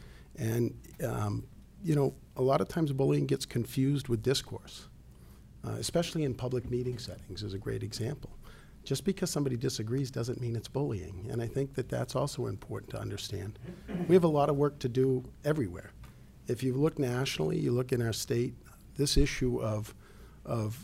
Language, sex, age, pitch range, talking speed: English, male, 50-69, 110-130 Hz, 180 wpm